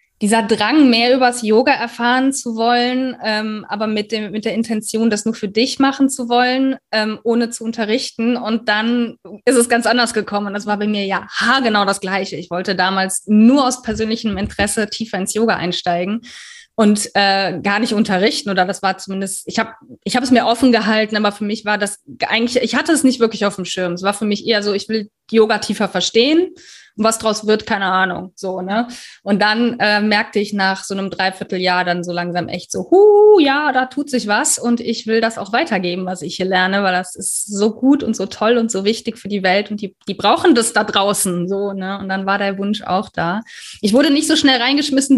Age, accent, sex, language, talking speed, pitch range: 20-39, German, female, German, 220 wpm, 195-245 Hz